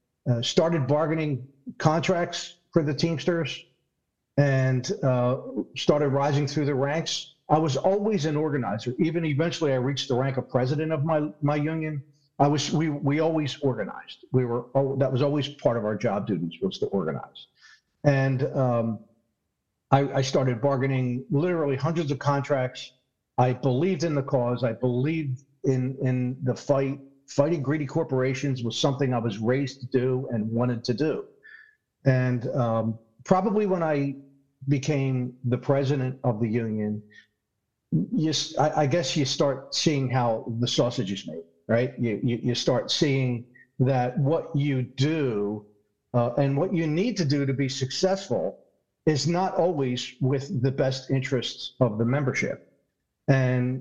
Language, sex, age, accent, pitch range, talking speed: English, male, 50-69, American, 125-150 Hz, 155 wpm